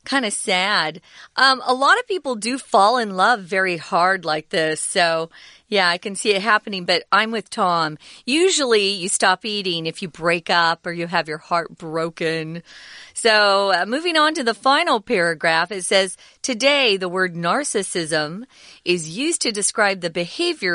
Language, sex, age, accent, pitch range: Chinese, female, 40-59, American, 175-245 Hz